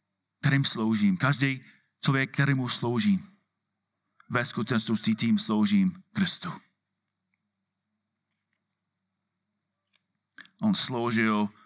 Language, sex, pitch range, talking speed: Czech, male, 110-180 Hz, 65 wpm